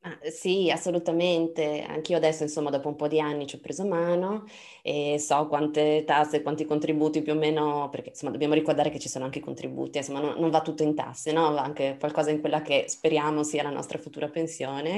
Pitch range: 145-170 Hz